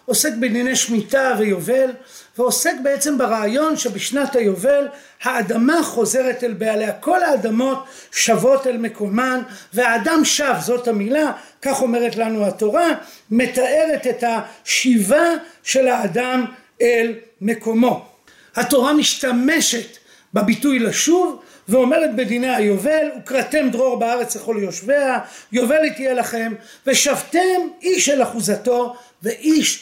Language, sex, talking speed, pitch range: Hebrew, male, 105 wpm, 230-295 Hz